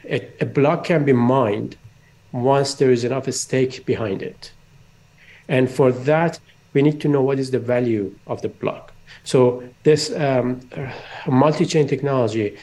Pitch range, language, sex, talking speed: 120-145 Hz, English, male, 145 wpm